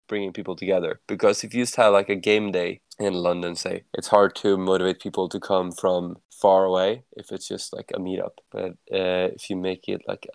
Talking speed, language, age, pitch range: 220 wpm, English, 20-39, 95-125 Hz